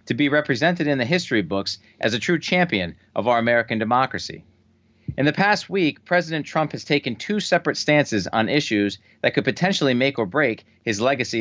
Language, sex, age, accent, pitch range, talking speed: English, male, 40-59, American, 110-155 Hz, 190 wpm